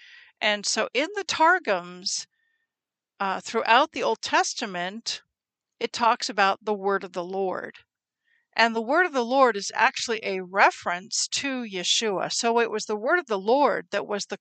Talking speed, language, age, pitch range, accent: 170 wpm, English, 50-69, 200-255 Hz, American